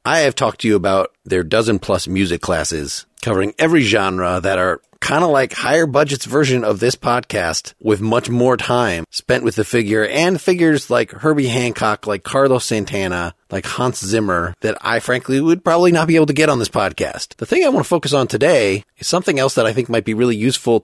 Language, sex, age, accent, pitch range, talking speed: English, male, 30-49, American, 100-135 Hz, 215 wpm